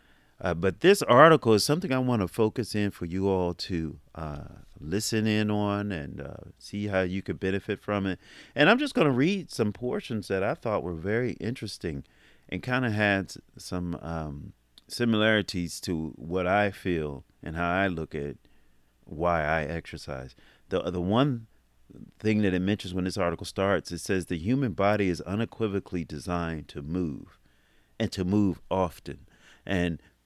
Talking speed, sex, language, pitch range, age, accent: 175 wpm, male, English, 85-110 Hz, 40-59, American